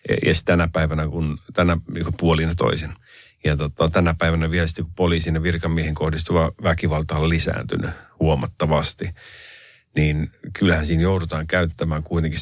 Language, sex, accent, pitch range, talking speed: Finnish, male, native, 80-90 Hz, 140 wpm